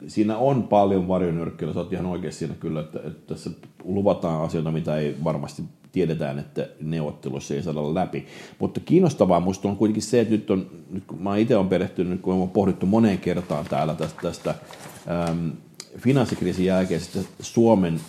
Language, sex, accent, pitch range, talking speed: Finnish, male, native, 80-95 Hz, 170 wpm